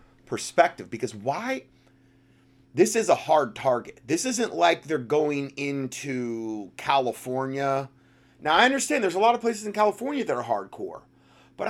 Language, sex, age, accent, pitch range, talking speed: English, male, 30-49, American, 125-175 Hz, 150 wpm